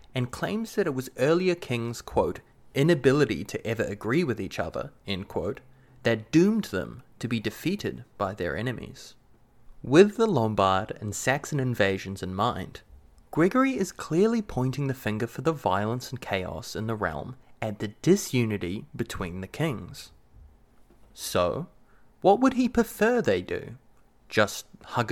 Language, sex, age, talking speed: English, male, 20-39, 150 wpm